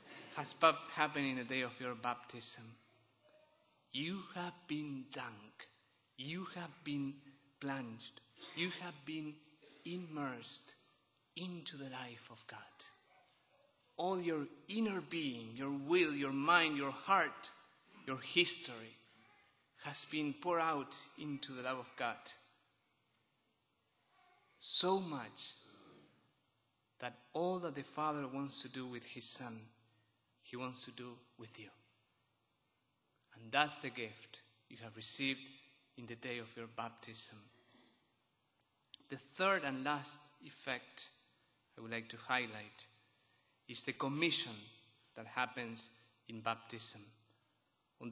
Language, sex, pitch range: English, male, 120-150 Hz